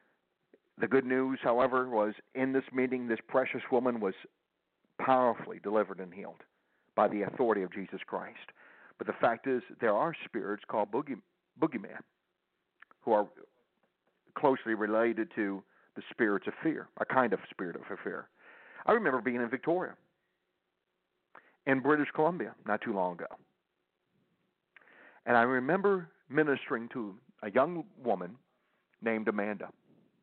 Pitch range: 110-150 Hz